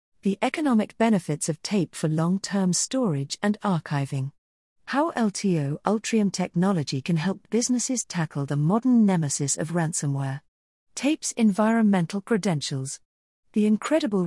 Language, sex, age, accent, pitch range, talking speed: English, female, 40-59, British, 155-210 Hz, 120 wpm